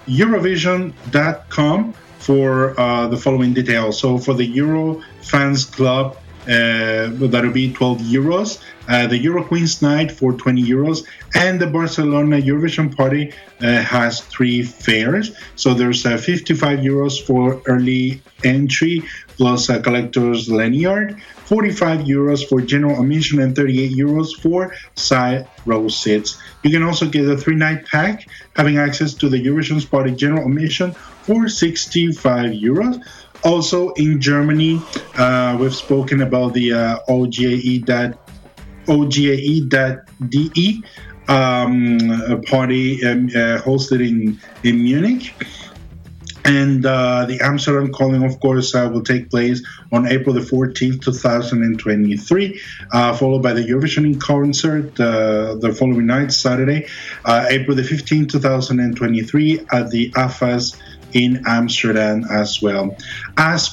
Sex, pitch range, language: male, 125-150 Hz, English